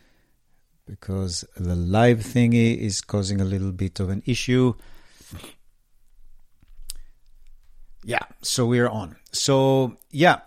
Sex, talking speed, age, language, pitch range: male, 105 wpm, 50-69, English, 110-140 Hz